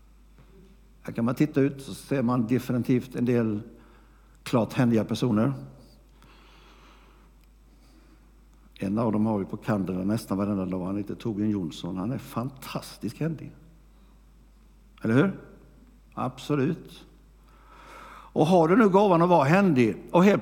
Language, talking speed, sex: Swedish, 130 wpm, male